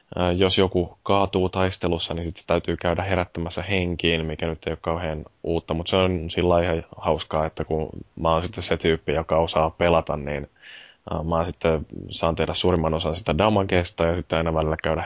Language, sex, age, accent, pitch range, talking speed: Finnish, male, 20-39, native, 80-95 Hz, 195 wpm